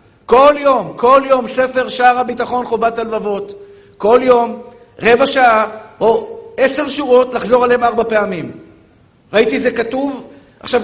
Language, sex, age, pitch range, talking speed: Hebrew, male, 50-69, 215-255 Hz, 140 wpm